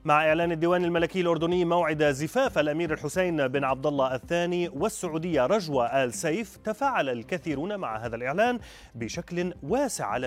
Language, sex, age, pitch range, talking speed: Arabic, male, 30-49, 125-185 Hz, 145 wpm